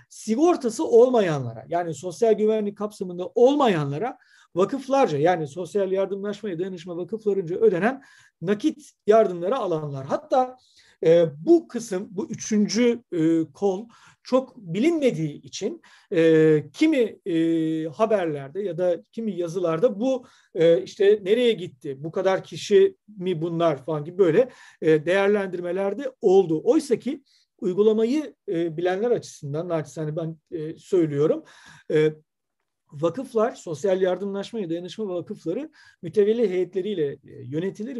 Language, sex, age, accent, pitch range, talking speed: Turkish, male, 50-69, native, 170-235 Hz, 110 wpm